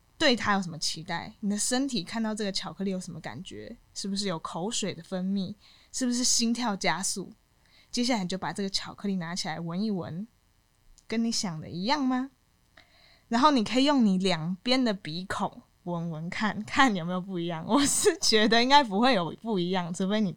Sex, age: female, 20-39